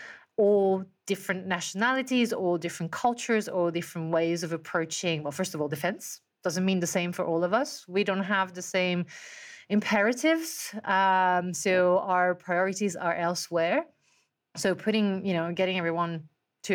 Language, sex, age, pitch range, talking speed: English, female, 30-49, 175-210 Hz, 155 wpm